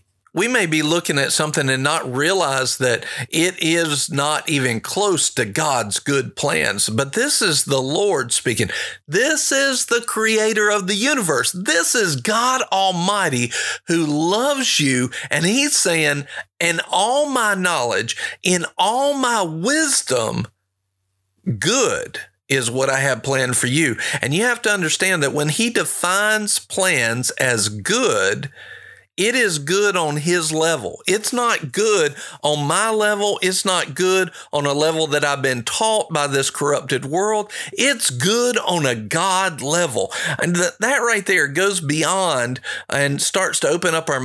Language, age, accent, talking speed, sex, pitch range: English, 50-69, American, 155 wpm, male, 140-210 Hz